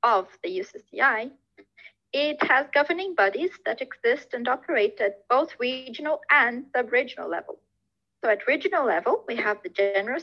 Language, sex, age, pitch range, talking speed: English, female, 30-49, 205-310 Hz, 145 wpm